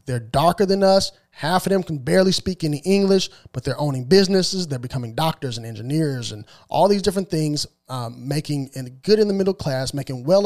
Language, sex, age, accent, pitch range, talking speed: English, male, 30-49, American, 130-195 Hz, 200 wpm